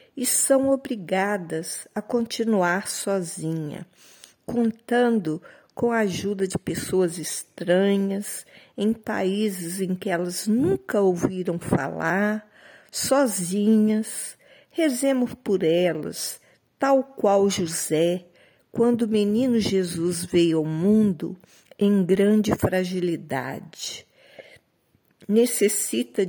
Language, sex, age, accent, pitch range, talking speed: Portuguese, female, 50-69, Brazilian, 175-225 Hz, 90 wpm